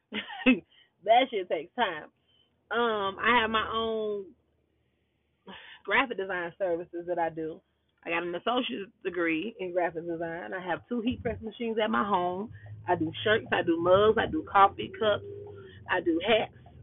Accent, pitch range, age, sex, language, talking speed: American, 170-240 Hz, 30-49, female, English, 160 wpm